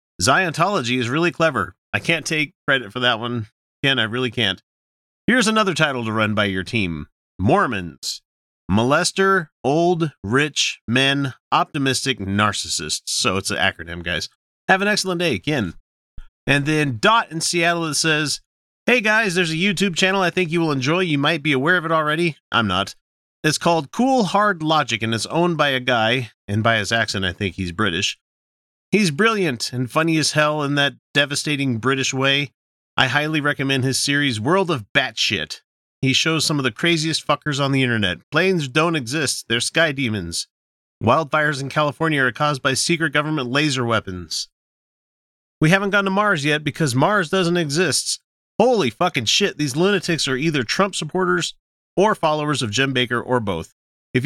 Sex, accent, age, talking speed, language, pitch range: male, American, 30-49, 175 wpm, English, 115-170 Hz